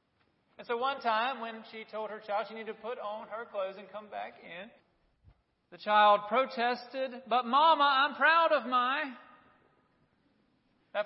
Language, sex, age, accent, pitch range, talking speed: English, male, 40-59, American, 175-230 Hz, 165 wpm